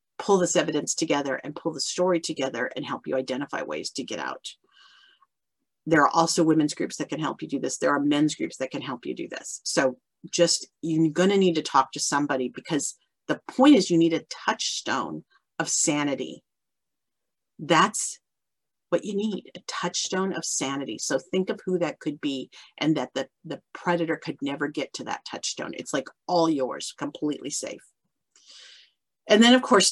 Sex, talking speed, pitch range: female, 190 wpm, 155-225 Hz